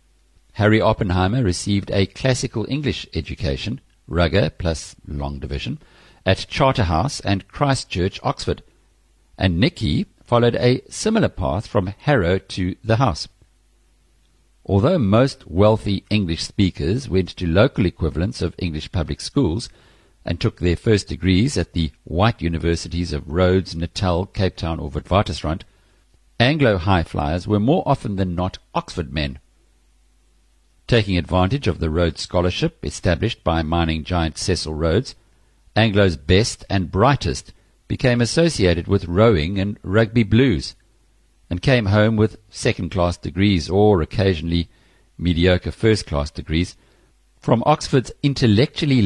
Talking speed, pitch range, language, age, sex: 125 wpm, 85-110 Hz, English, 50-69, male